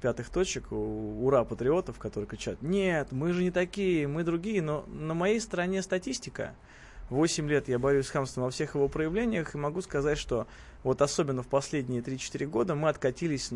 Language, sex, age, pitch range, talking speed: Russian, male, 20-39, 125-170 Hz, 180 wpm